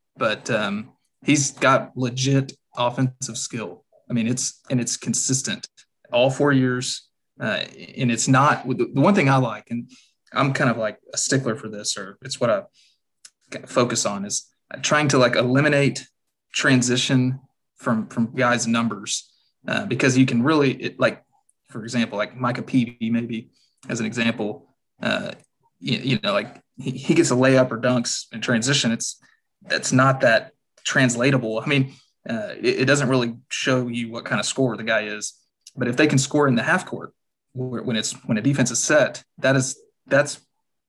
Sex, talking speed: male, 175 wpm